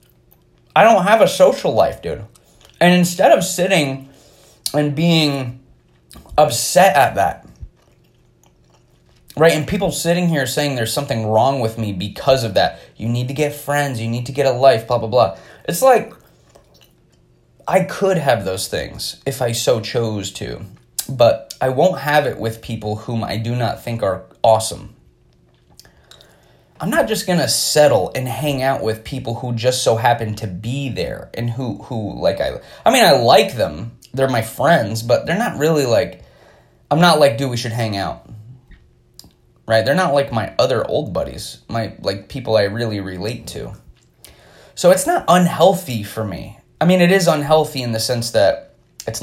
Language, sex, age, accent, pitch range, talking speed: English, male, 20-39, American, 110-145 Hz, 175 wpm